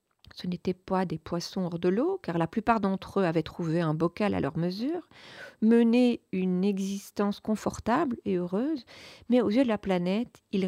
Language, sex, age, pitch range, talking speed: French, female, 40-59, 180-220 Hz, 185 wpm